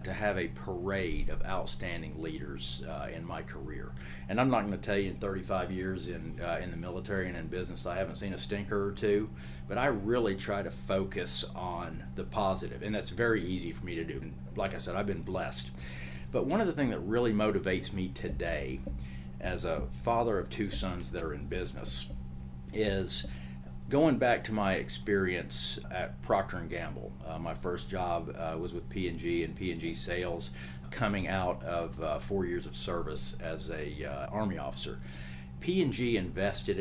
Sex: male